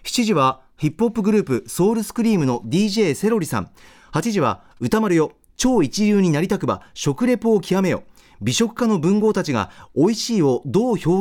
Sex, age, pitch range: male, 40-59, 130-210 Hz